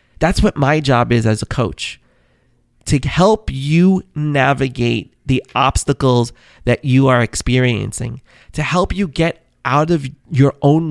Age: 30-49